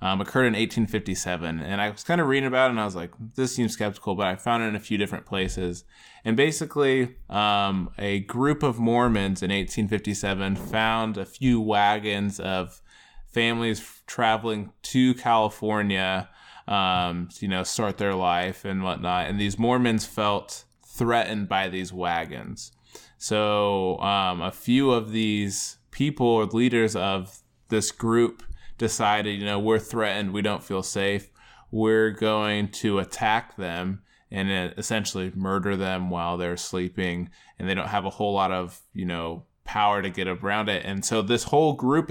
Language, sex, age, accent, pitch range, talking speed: English, male, 20-39, American, 95-115 Hz, 165 wpm